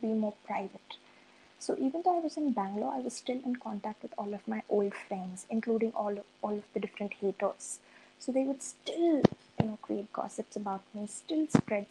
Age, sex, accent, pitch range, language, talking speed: 20-39, female, Indian, 205-255 Hz, English, 205 wpm